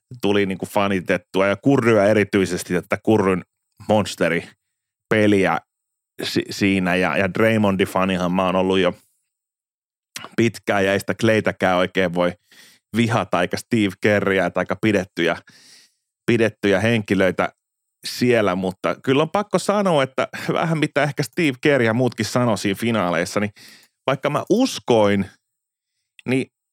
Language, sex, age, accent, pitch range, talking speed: Finnish, male, 30-49, native, 95-125 Hz, 120 wpm